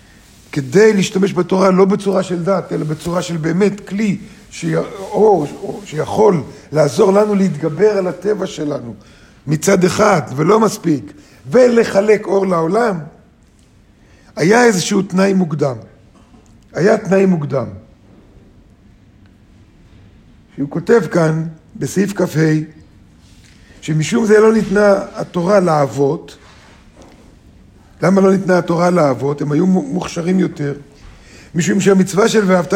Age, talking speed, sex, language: 50-69, 115 wpm, male, Hebrew